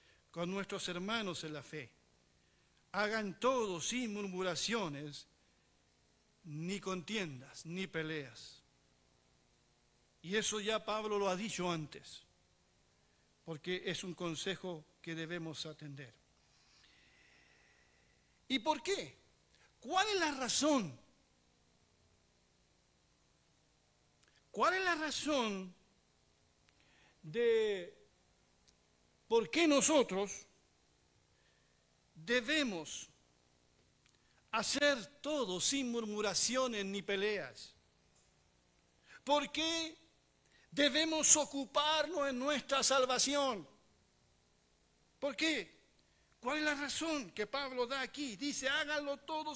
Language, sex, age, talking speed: Spanish, male, 60-79, 85 wpm